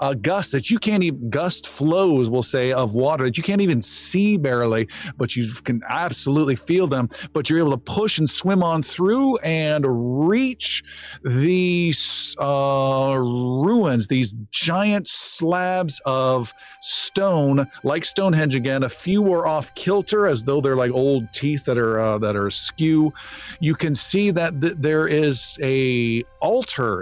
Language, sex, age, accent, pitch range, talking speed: English, male, 40-59, American, 120-165 Hz, 155 wpm